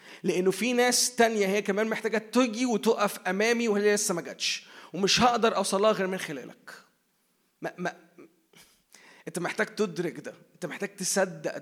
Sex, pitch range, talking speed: male, 190-225 Hz, 145 wpm